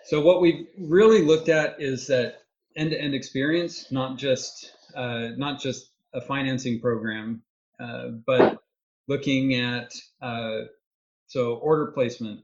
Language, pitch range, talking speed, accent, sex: English, 120-140 Hz, 135 wpm, American, male